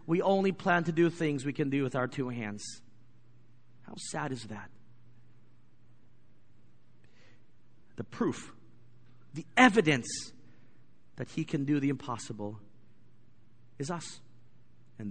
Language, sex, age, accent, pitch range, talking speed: English, male, 30-49, American, 115-160 Hz, 120 wpm